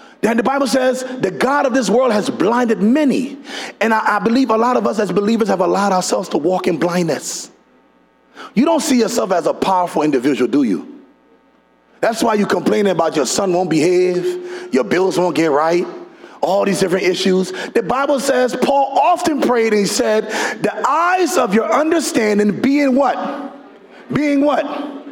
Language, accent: English, American